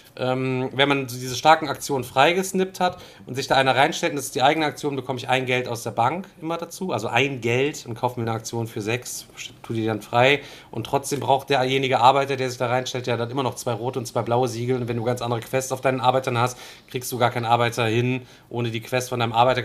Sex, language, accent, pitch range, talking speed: male, German, German, 120-150 Hz, 250 wpm